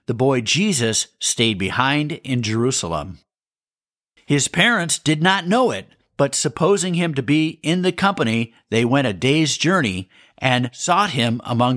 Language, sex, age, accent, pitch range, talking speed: English, male, 50-69, American, 115-180 Hz, 155 wpm